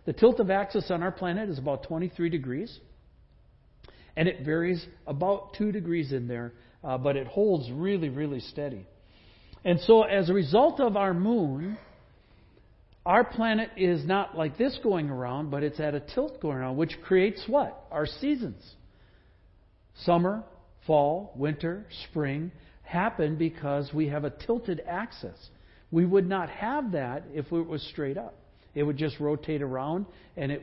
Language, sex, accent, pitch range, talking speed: English, male, American, 140-190 Hz, 160 wpm